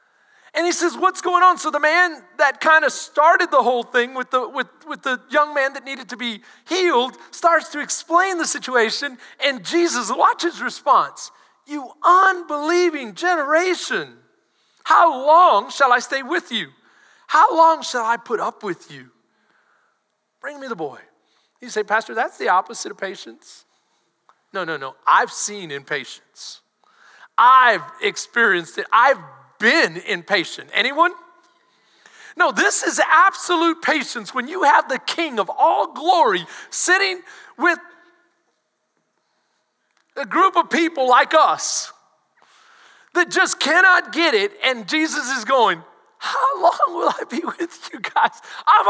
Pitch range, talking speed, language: 270-360 Hz, 145 wpm, English